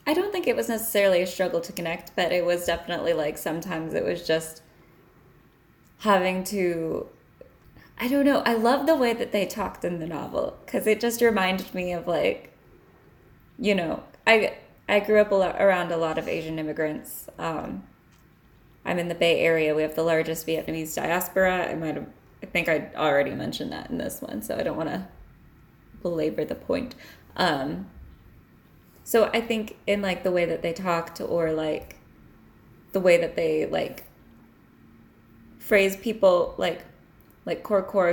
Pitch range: 170-225 Hz